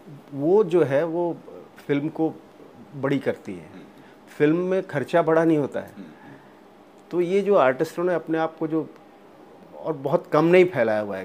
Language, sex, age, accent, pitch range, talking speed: Hindi, male, 40-59, native, 125-170 Hz, 170 wpm